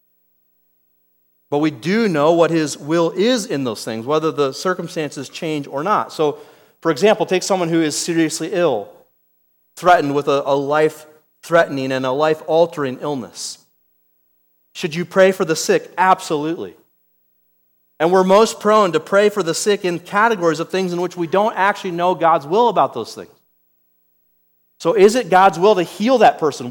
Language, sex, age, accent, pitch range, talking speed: English, male, 40-59, American, 140-200 Hz, 165 wpm